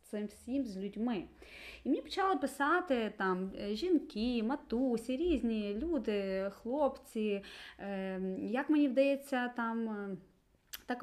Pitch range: 195-275 Hz